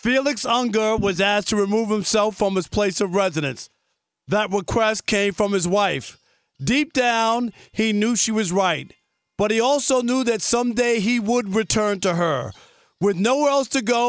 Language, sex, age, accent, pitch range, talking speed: English, male, 40-59, American, 200-240 Hz, 175 wpm